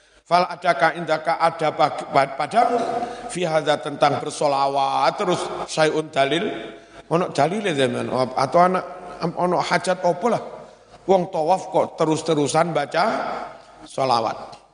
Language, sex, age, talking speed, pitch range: Indonesian, male, 50-69, 100 wpm, 145-180 Hz